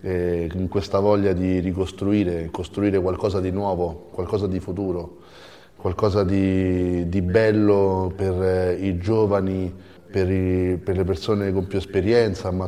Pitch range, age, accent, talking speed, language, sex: 90-100 Hz, 30-49, native, 135 wpm, Italian, male